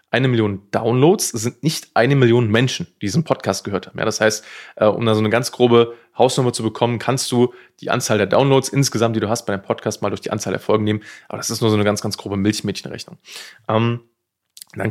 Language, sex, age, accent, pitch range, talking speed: German, male, 20-39, German, 105-125 Hz, 225 wpm